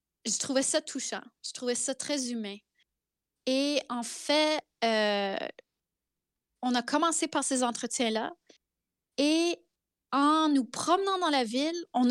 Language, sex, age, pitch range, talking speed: French, female, 20-39, 240-295 Hz, 135 wpm